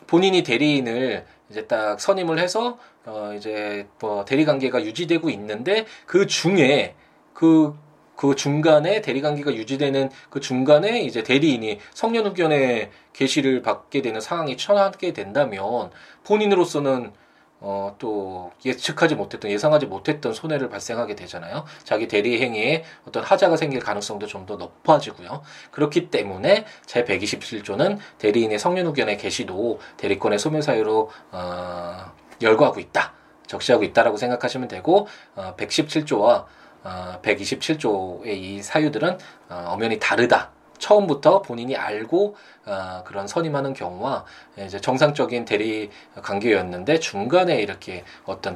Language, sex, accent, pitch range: Korean, male, native, 110-160 Hz